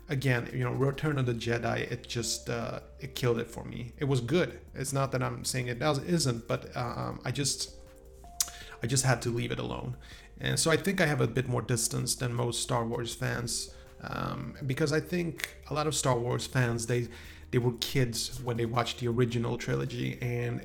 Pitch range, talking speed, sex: 80-130 Hz, 200 wpm, male